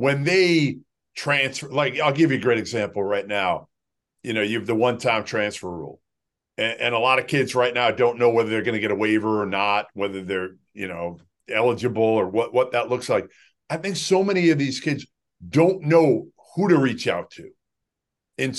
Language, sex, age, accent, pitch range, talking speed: English, male, 50-69, American, 120-160 Hz, 210 wpm